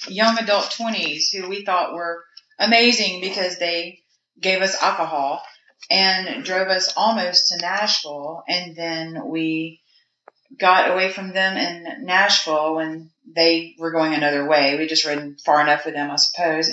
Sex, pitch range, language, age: female, 160-190 Hz, English, 40-59